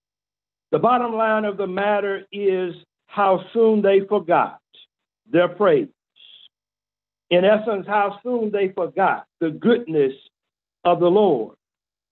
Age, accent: 60-79, American